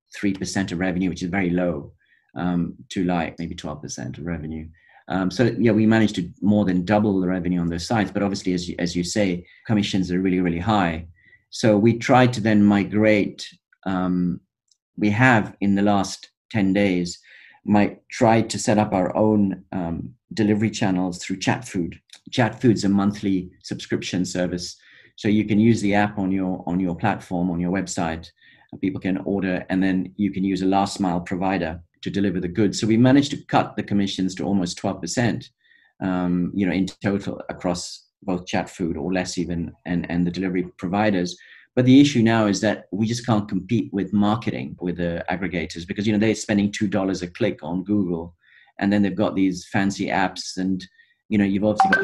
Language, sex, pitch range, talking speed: English, male, 90-105 Hz, 195 wpm